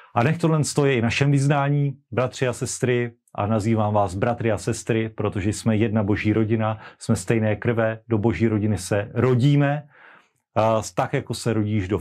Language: Slovak